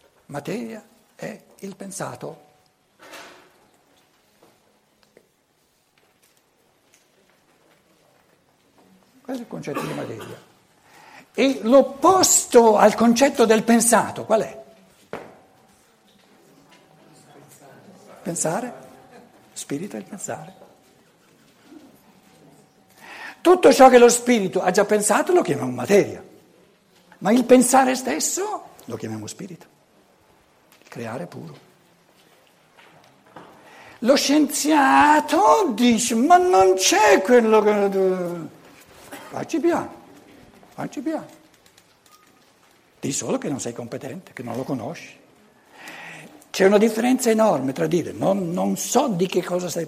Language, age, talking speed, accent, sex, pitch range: Italian, 60-79, 95 wpm, native, male, 190-270 Hz